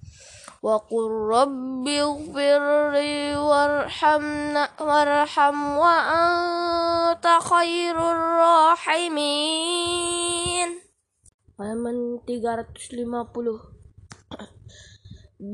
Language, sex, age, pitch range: Indonesian, female, 10-29, 240-330 Hz